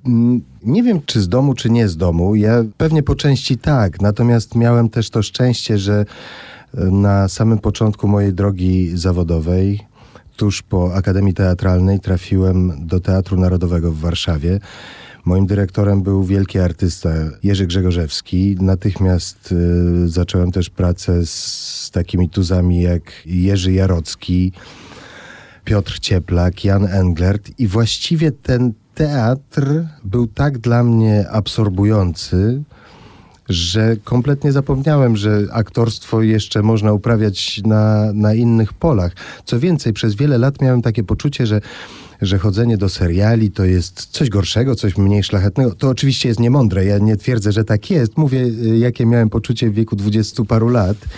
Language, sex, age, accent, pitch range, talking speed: Polish, male, 30-49, native, 95-120 Hz, 140 wpm